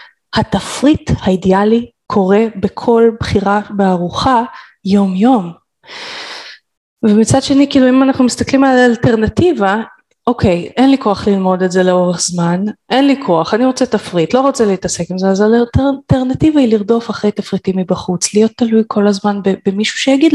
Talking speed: 145 wpm